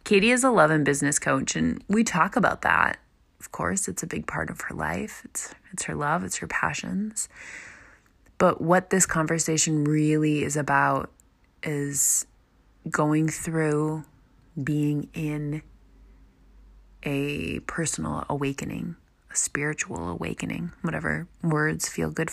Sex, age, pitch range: female, 20-39, 140-160 Hz